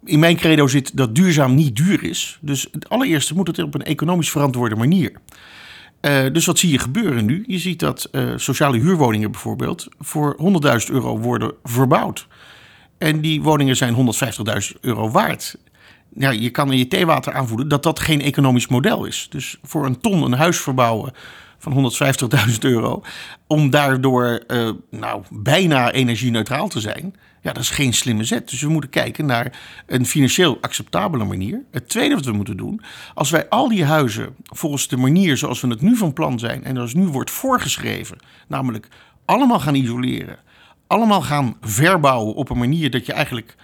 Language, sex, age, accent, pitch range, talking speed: Dutch, male, 50-69, Dutch, 125-165 Hz, 175 wpm